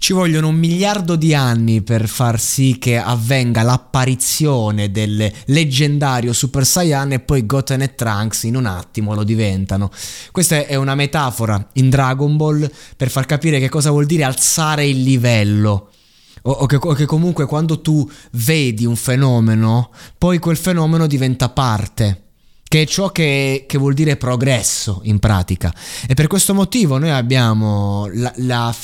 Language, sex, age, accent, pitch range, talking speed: Italian, male, 20-39, native, 110-150 Hz, 155 wpm